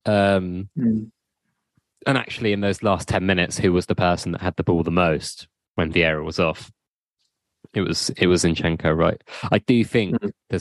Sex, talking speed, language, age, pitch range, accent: male, 180 wpm, English, 20-39, 85-105 Hz, British